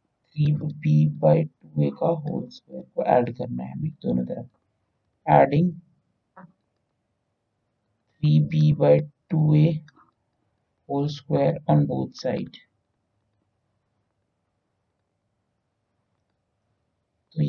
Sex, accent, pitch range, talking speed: male, native, 100-155 Hz, 70 wpm